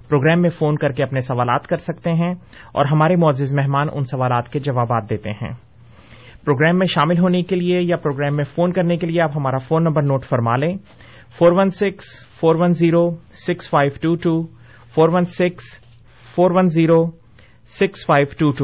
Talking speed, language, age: 130 wpm, Urdu, 30-49